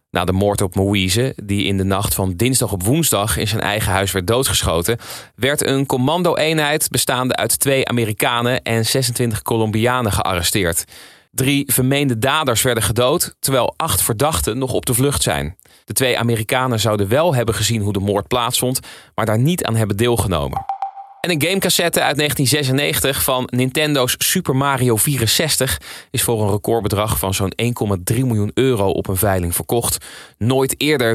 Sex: male